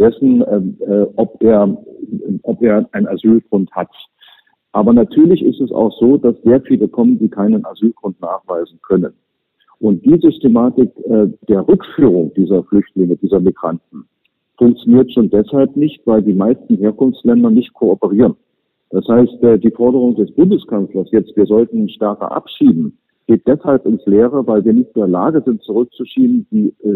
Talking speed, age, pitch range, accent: 155 wpm, 50-69, 110-155 Hz, German